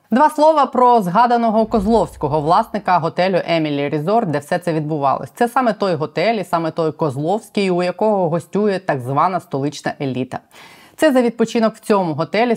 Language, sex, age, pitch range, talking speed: Ukrainian, female, 20-39, 150-210 Hz, 160 wpm